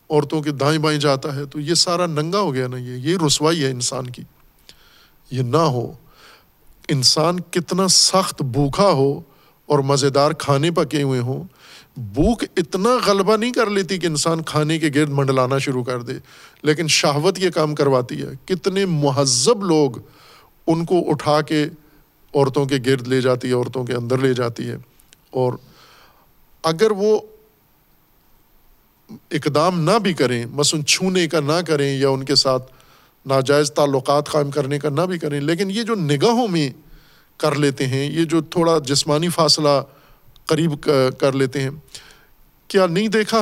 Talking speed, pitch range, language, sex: 160 wpm, 140-175 Hz, Urdu, male